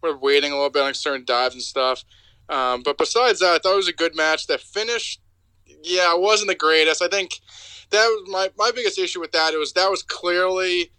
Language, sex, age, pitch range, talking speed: English, male, 20-39, 140-185 Hz, 235 wpm